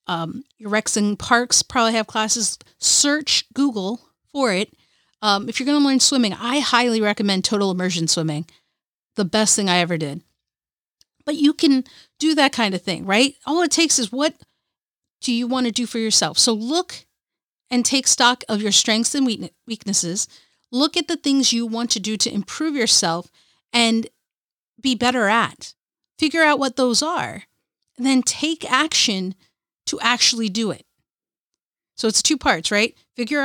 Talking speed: 170 wpm